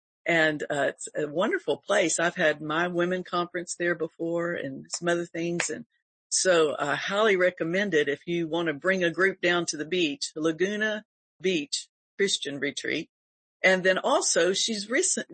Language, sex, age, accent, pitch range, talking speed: English, female, 50-69, American, 155-195 Hz, 170 wpm